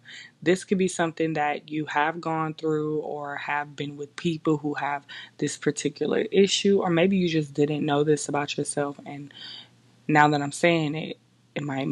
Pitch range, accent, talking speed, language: 145-170 Hz, American, 180 wpm, English